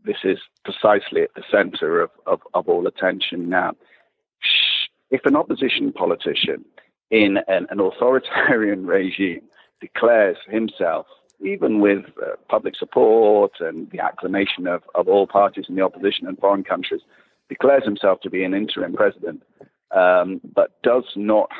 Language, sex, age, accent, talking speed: English, male, 50-69, British, 140 wpm